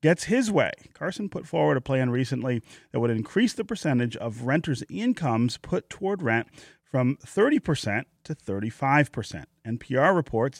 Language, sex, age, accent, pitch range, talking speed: English, male, 30-49, American, 115-155 Hz, 145 wpm